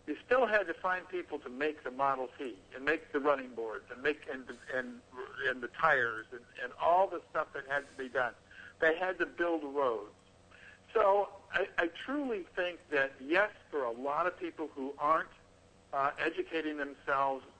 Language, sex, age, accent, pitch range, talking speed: English, male, 60-79, American, 130-165 Hz, 190 wpm